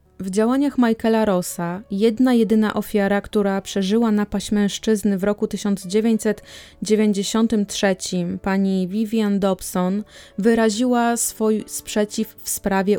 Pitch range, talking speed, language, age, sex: 195-225 Hz, 100 wpm, Polish, 20-39, female